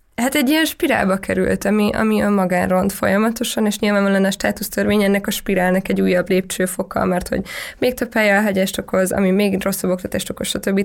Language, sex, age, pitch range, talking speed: Hungarian, female, 20-39, 190-215 Hz, 195 wpm